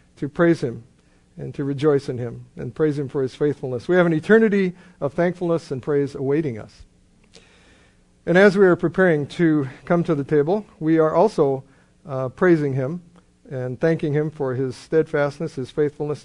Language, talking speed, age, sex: English, 175 wpm, 50-69, male